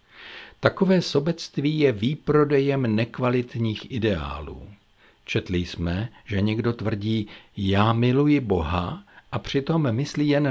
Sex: male